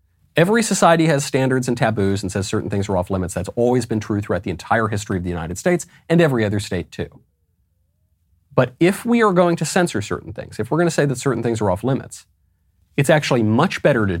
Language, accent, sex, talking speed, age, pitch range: English, American, male, 230 wpm, 30-49, 90-135 Hz